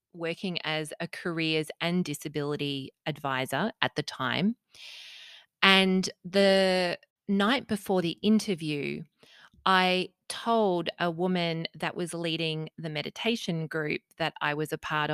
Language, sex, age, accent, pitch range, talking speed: English, female, 30-49, Australian, 160-210 Hz, 125 wpm